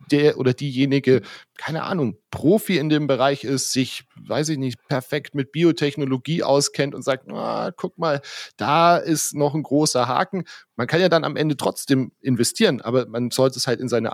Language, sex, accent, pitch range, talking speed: German, male, German, 115-145 Hz, 185 wpm